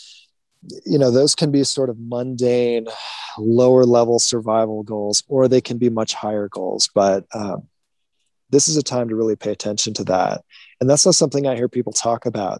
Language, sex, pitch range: English, male, 120-140 Hz